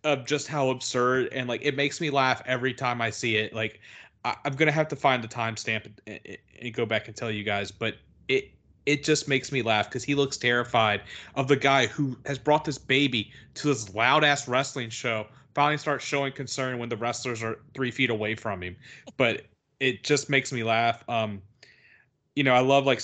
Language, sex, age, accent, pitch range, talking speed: English, male, 30-49, American, 115-135 Hz, 215 wpm